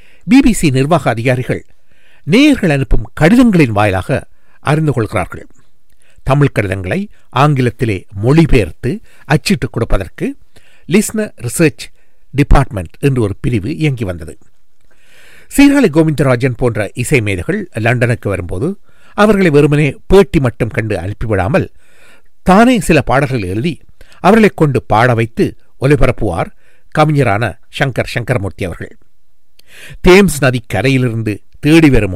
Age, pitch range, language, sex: 60-79, 110-160 Hz, Tamil, male